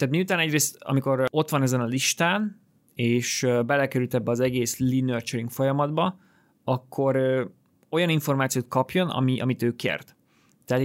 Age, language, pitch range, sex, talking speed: 20-39, Hungarian, 120-140 Hz, male, 145 wpm